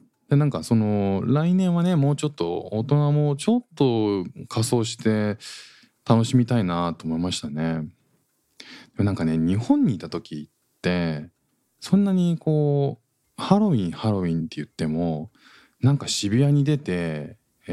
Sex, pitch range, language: male, 85-140 Hz, Japanese